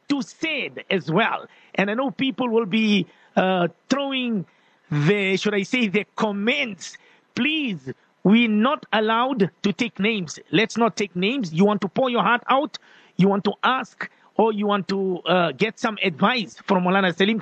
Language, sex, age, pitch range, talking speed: English, male, 50-69, 195-250 Hz, 175 wpm